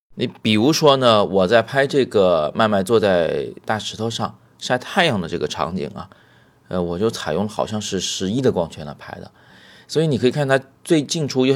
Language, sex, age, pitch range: Chinese, male, 30-49, 95-130 Hz